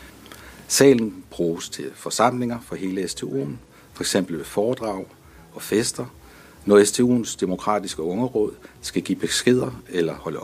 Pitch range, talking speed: 80-115 Hz, 125 wpm